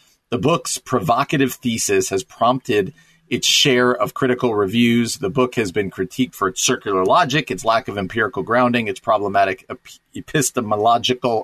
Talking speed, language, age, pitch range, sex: 145 wpm, English, 40-59, 110-130 Hz, male